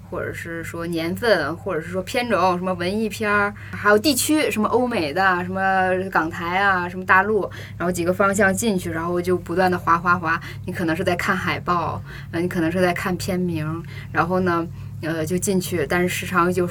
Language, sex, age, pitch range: Chinese, female, 10-29, 165-205 Hz